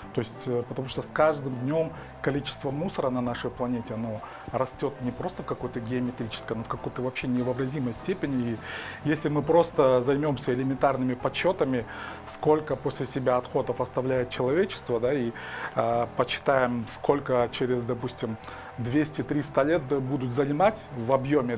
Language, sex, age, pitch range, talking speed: Russian, male, 30-49, 125-145 Hz, 145 wpm